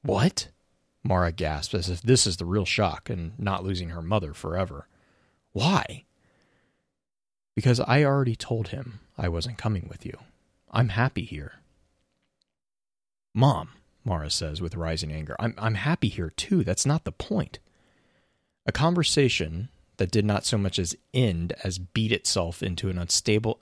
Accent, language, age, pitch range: American, English, 30-49, 85-110 Hz